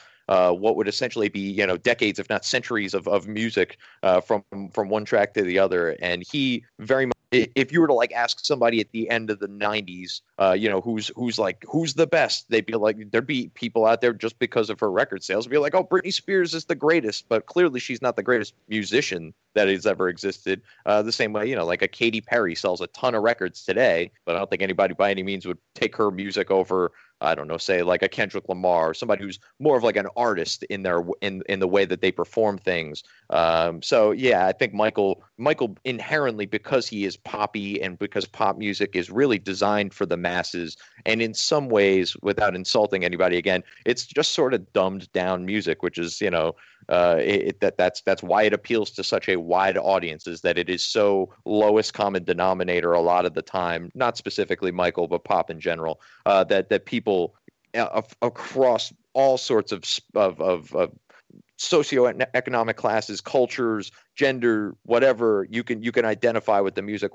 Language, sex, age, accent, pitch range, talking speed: English, male, 30-49, American, 95-115 Hz, 215 wpm